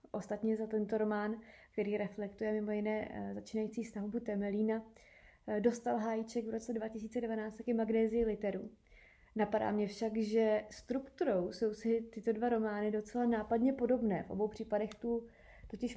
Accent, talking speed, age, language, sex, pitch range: native, 145 wpm, 20-39, Czech, female, 210-235 Hz